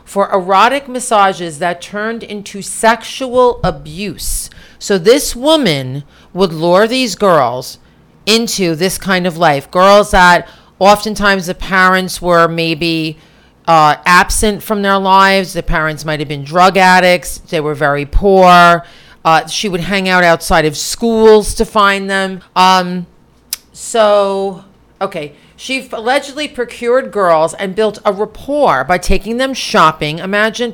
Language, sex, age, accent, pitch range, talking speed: English, female, 40-59, American, 170-230 Hz, 135 wpm